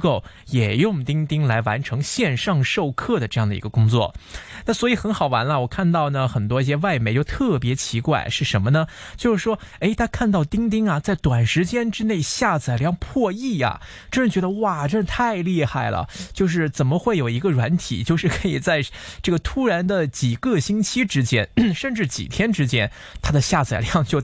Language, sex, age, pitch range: Chinese, male, 20-39, 125-190 Hz